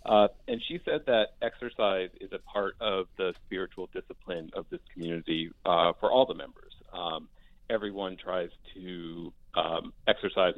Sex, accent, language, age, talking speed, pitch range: male, American, English, 40-59, 155 wpm, 90-120 Hz